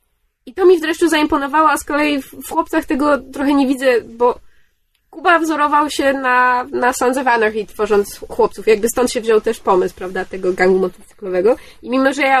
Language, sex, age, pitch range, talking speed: Polish, female, 20-39, 210-275 Hz, 190 wpm